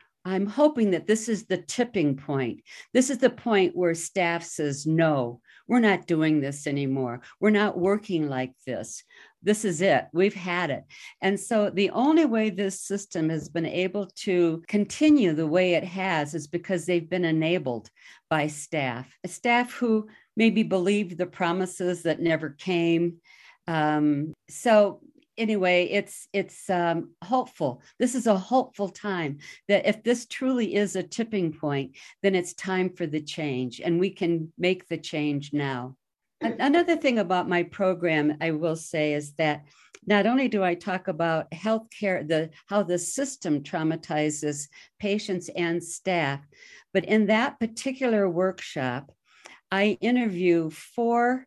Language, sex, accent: English, female, American